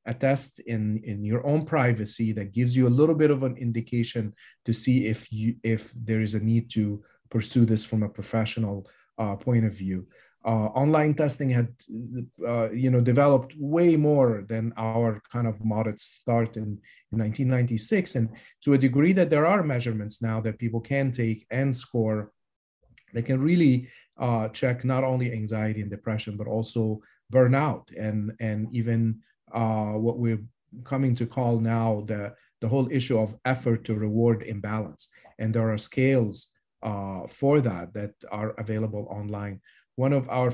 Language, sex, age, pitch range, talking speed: English, male, 40-59, 110-130 Hz, 170 wpm